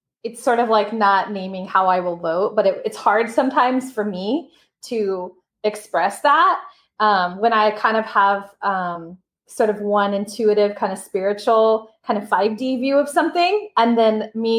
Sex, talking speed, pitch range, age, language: female, 175 wpm, 185-225 Hz, 20-39, English